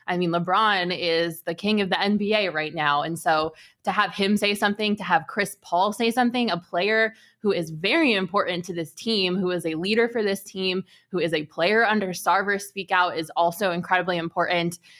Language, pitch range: English, 175-210 Hz